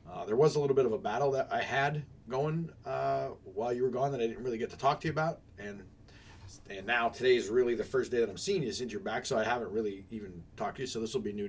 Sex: male